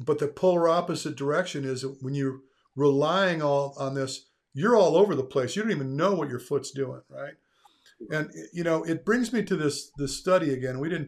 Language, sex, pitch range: English, male, 135-175 Hz